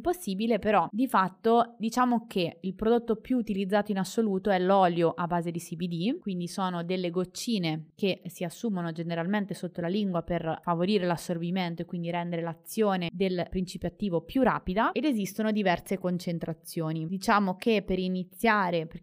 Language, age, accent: Italian, 20-39, native